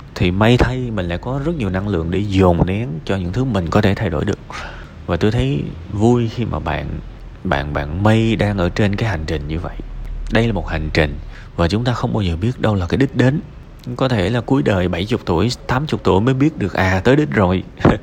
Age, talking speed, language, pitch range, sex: 30-49, 245 wpm, Vietnamese, 85-115 Hz, male